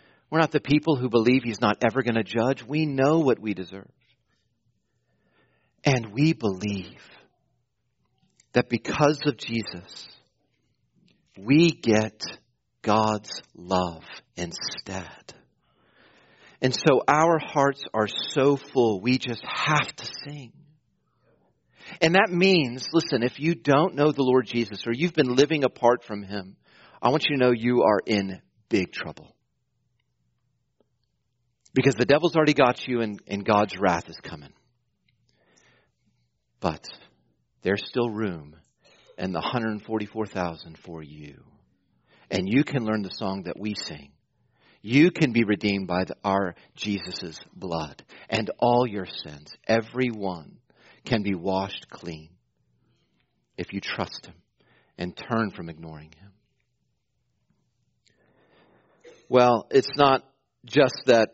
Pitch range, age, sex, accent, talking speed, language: 100-135 Hz, 40-59, male, American, 130 wpm, English